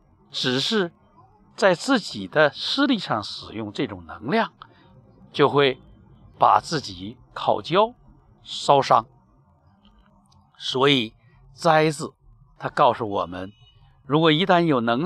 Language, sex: Chinese, male